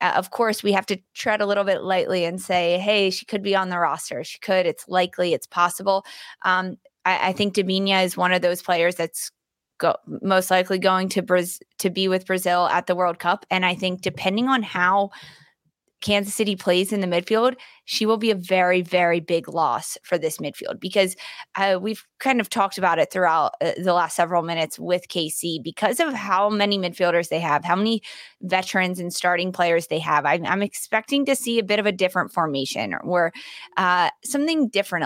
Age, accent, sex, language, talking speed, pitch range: 20-39, American, female, English, 205 wpm, 175-205 Hz